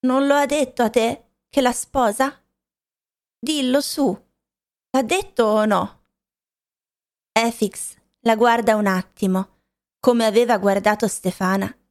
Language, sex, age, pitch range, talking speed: Italian, female, 30-49, 200-250 Hz, 120 wpm